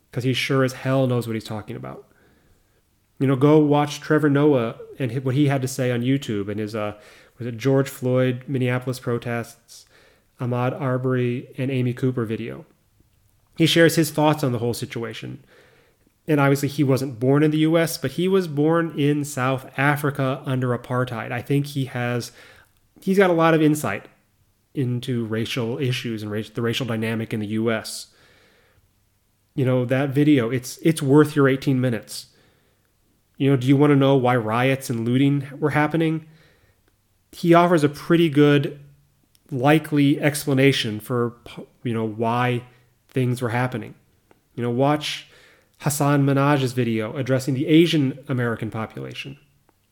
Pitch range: 115-145 Hz